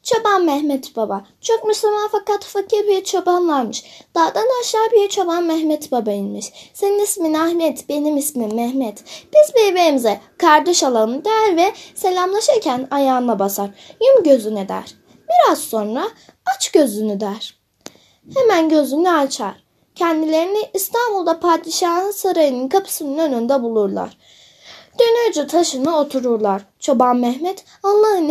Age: 10-29